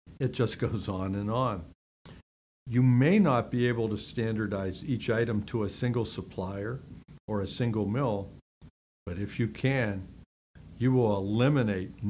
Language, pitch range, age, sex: English, 100-125 Hz, 60-79, male